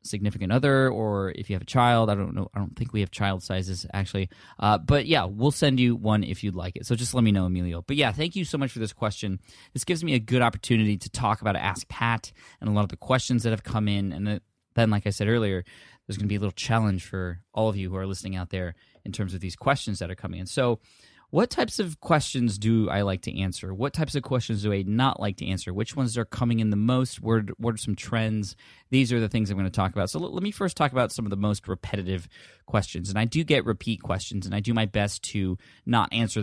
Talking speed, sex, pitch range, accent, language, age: 265 wpm, male, 100-120 Hz, American, English, 20-39